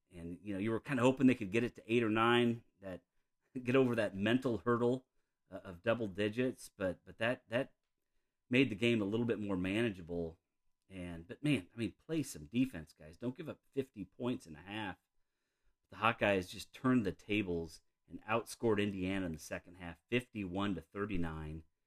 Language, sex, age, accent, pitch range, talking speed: English, male, 40-59, American, 85-115 Hz, 190 wpm